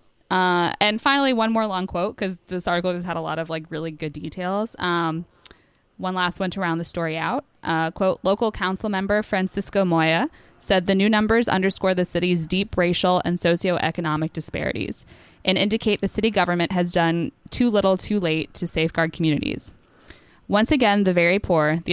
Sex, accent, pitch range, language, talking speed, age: female, American, 165-195 Hz, English, 185 wpm, 20-39